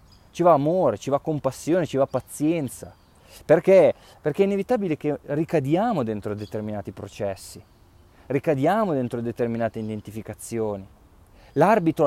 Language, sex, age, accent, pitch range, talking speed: Italian, male, 20-39, native, 110-155 Hz, 115 wpm